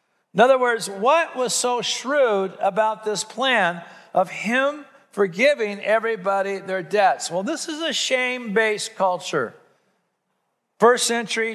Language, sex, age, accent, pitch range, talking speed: English, male, 50-69, American, 185-225 Hz, 125 wpm